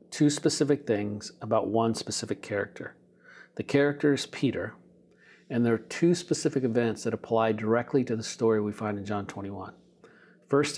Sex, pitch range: male, 110-125 Hz